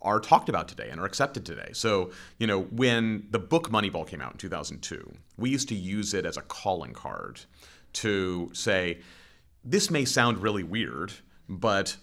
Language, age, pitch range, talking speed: English, 30-49, 90-115 Hz, 180 wpm